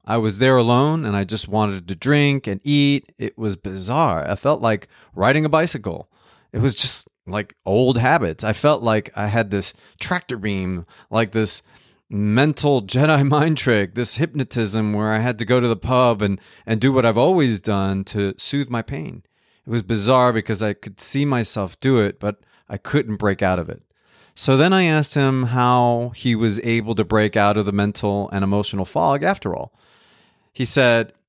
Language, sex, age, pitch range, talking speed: English, male, 30-49, 105-130 Hz, 195 wpm